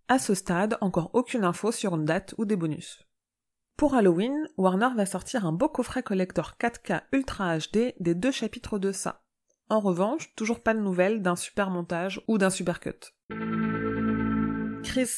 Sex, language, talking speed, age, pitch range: female, French, 170 wpm, 30-49, 175-230 Hz